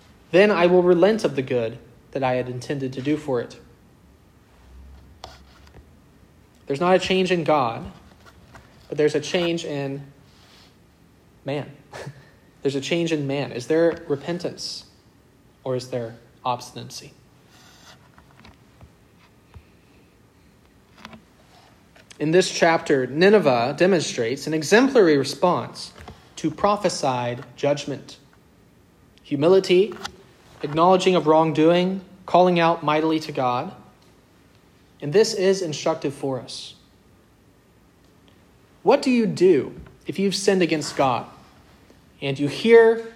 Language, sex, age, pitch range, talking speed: English, male, 30-49, 125-175 Hz, 105 wpm